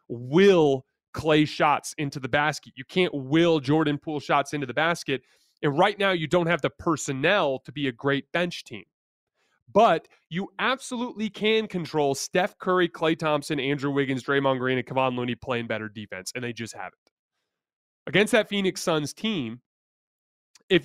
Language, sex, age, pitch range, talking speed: English, male, 30-49, 140-170 Hz, 165 wpm